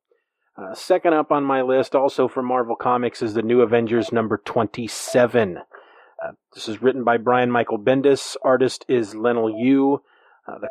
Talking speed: 170 wpm